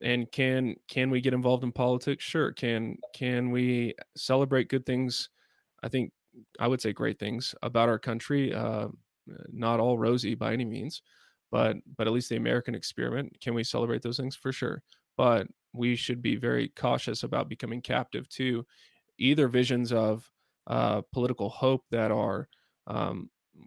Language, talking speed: English, 165 wpm